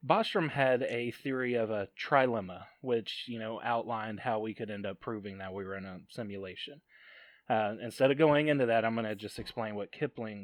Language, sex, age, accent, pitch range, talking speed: English, male, 20-39, American, 110-140 Hz, 205 wpm